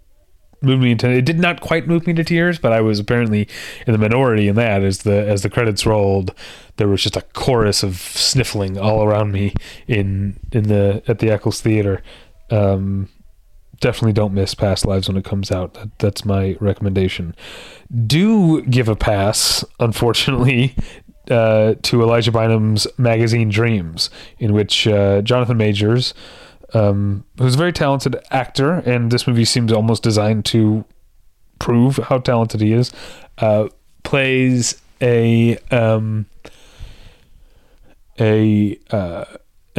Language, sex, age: English, male, 30-49